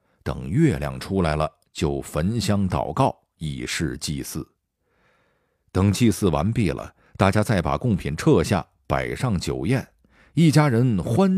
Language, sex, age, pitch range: Chinese, male, 50-69, 75-115 Hz